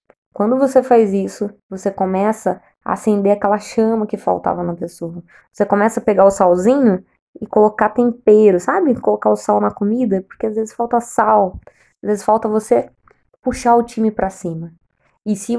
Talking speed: 175 wpm